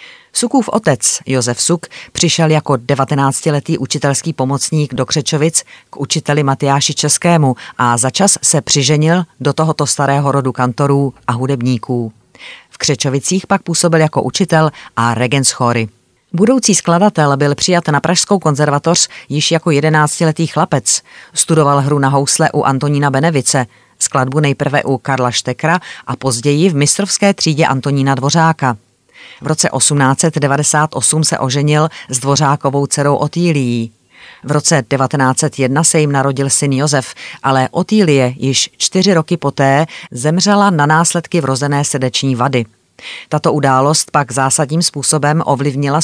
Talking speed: 130 wpm